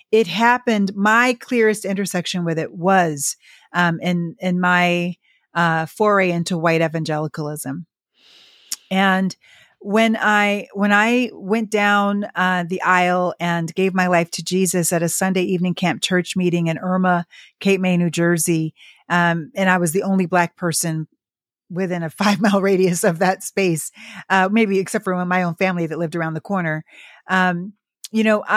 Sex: female